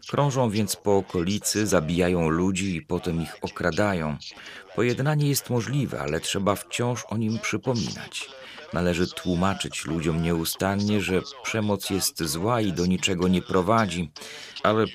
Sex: male